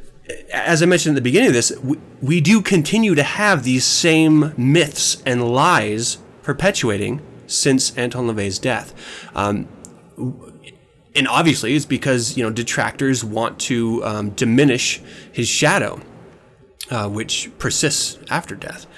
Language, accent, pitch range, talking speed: English, American, 115-145 Hz, 135 wpm